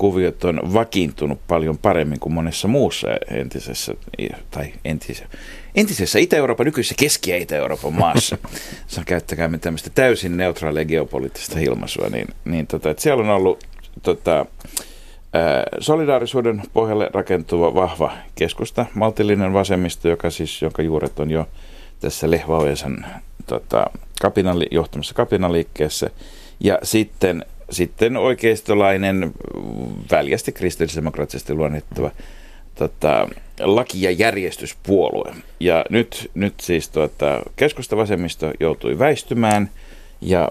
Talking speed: 110 wpm